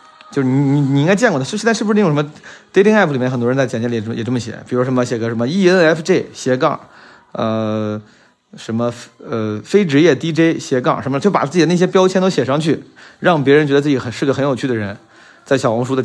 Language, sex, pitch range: Chinese, male, 120-150 Hz